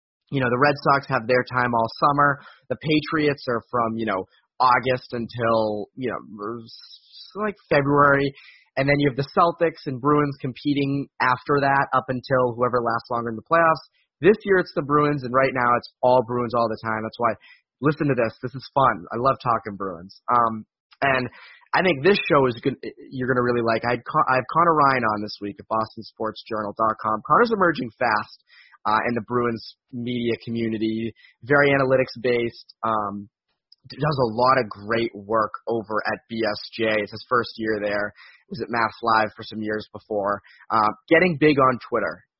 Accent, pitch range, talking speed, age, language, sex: American, 110-140 Hz, 185 wpm, 30-49, English, male